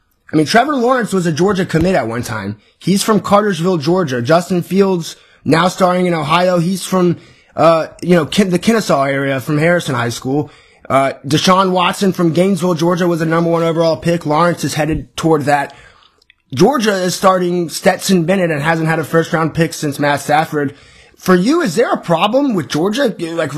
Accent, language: American, English